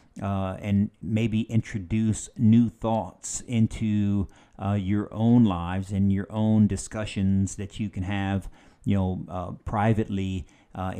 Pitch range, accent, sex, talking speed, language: 95-110 Hz, American, male, 130 wpm, English